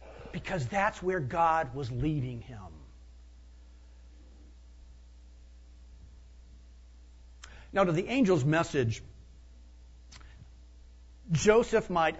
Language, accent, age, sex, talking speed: English, American, 50-69, male, 70 wpm